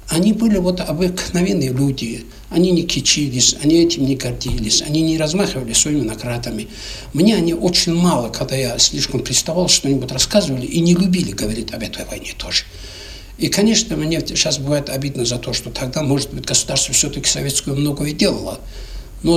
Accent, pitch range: native, 125-165 Hz